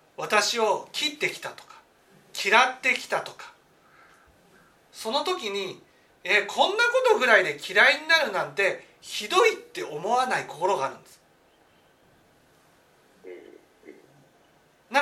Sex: male